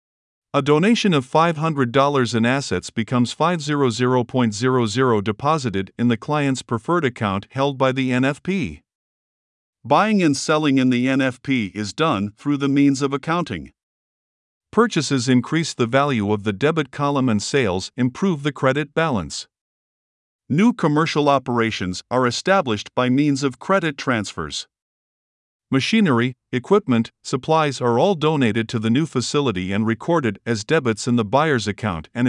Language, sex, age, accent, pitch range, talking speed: English, male, 50-69, American, 115-155 Hz, 140 wpm